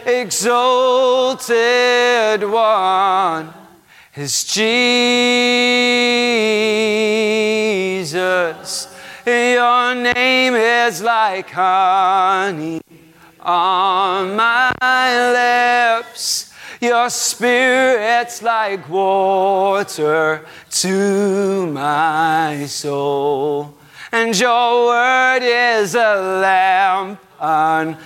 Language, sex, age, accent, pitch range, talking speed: English, male, 30-49, American, 190-245 Hz, 55 wpm